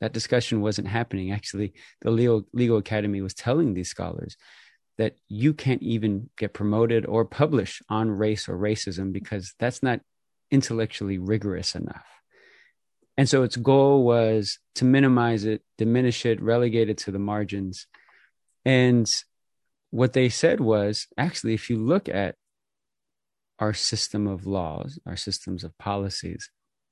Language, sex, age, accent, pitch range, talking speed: English, male, 30-49, American, 105-125 Hz, 140 wpm